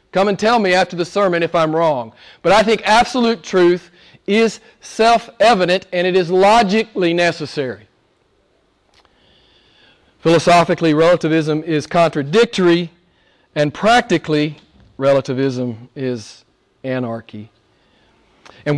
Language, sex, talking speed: English, male, 100 wpm